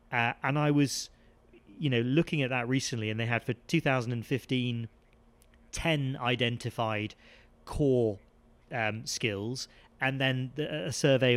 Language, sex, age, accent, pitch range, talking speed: English, male, 40-59, British, 115-150 Hz, 130 wpm